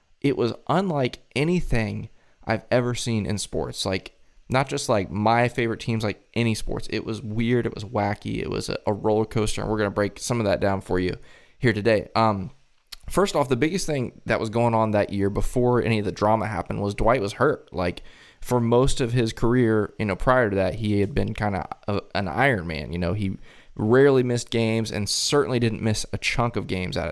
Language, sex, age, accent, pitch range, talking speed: English, male, 20-39, American, 95-115 Hz, 220 wpm